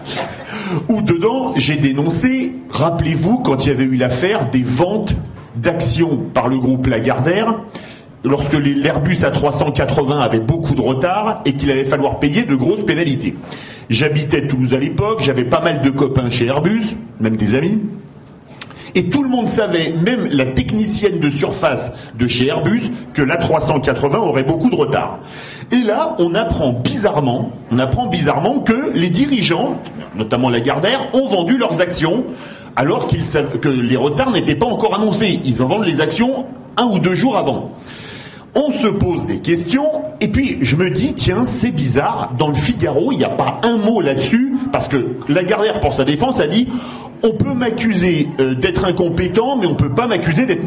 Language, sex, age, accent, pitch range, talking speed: French, male, 40-59, French, 130-200 Hz, 175 wpm